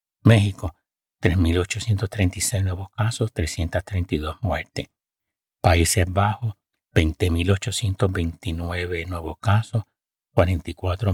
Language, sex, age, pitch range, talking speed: Spanish, male, 60-79, 85-105 Hz, 65 wpm